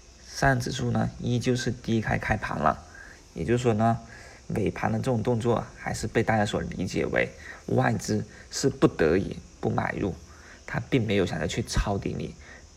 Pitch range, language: 90-120 Hz, Chinese